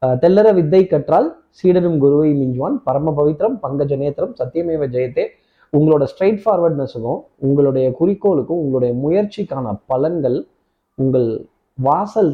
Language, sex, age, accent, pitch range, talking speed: Tamil, male, 20-39, native, 135-180 Hz, 95 wpm